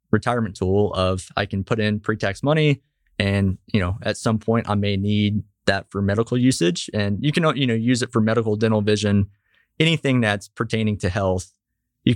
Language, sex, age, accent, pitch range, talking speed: English, male, 20-39, American, 105-125 Hz, 190 wpm